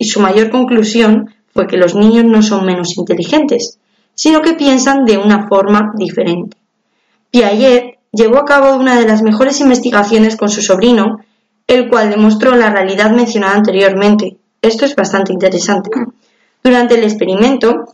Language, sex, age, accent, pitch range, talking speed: Spanish, female, 20-39, Spanish, 195-245 Hz, 150 wpm